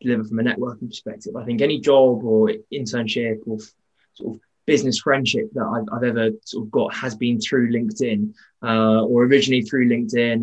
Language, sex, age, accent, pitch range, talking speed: English, male, 20-39, British, 110-125 Hz, 185 wpm